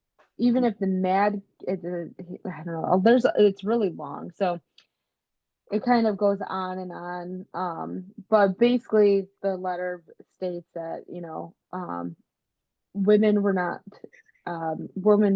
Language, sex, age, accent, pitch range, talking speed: English, female, 20-39, American, 170-195 Hz, 140 wpm